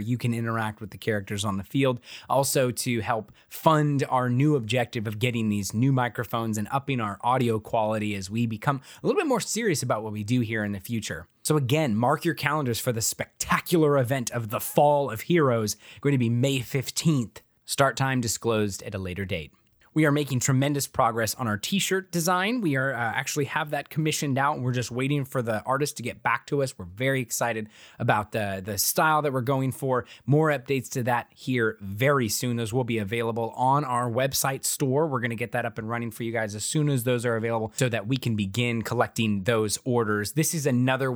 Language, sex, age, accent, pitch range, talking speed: English, male, 20-39, American, 115-140 Hz, 220 wpm